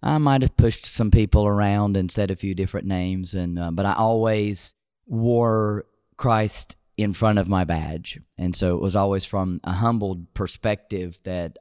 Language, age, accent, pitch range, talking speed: English, 30-49, American, 90-110 Hz, 180 wpm